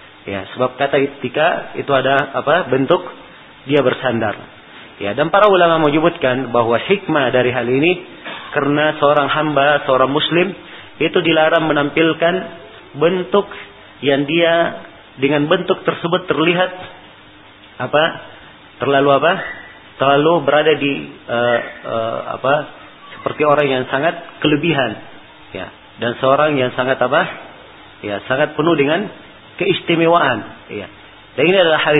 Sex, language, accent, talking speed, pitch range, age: male, English, Indonesian, 125 wpm, 130-160 Hz, 40-59